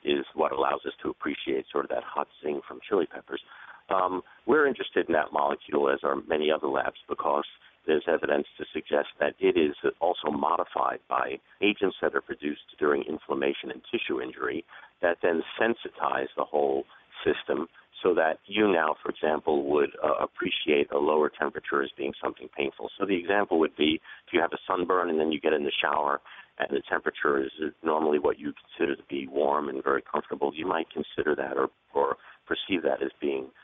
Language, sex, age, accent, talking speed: English, male, 50-69, American, 195 wpm